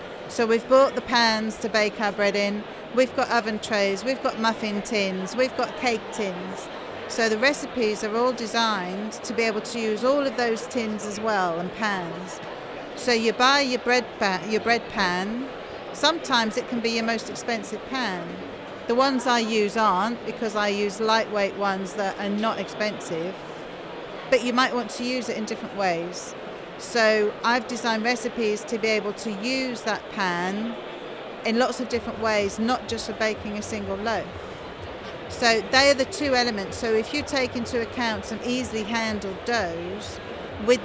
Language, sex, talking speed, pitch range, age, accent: English, female, 175 wpm, 210-245 Hz, 40-59, British